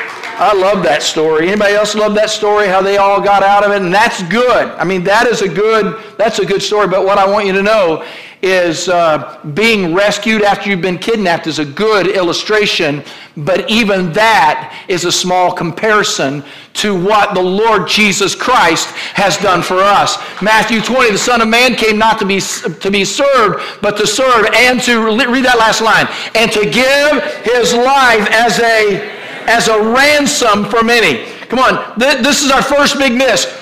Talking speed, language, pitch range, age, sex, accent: 190 wpm, English, 190-240 Hz, 50-69, male, American